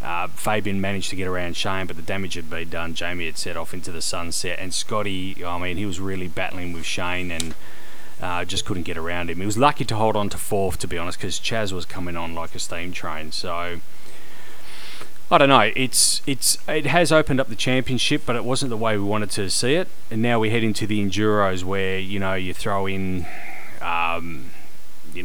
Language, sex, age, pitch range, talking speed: English, male, 30-49, 90-110 Hz, 225 wpm